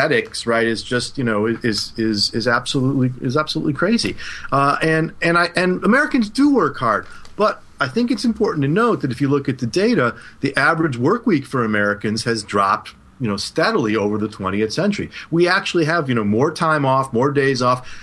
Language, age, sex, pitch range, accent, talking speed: English, 40-59, male, 115-160 Hz, American, 205 wpm